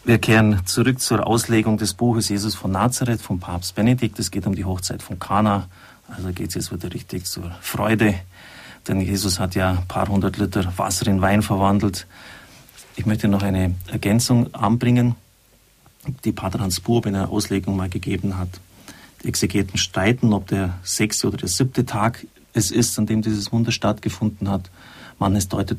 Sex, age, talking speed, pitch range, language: male, 40-59, 180 wpm, 95-115 Hz, German